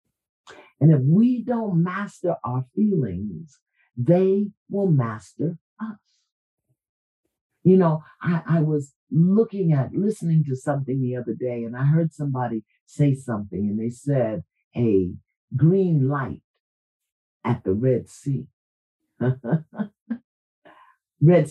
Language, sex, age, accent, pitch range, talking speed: English, male, 50-69, American, 130-185 Hz, 115 wpm